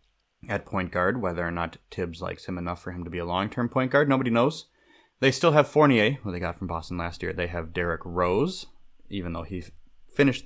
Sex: male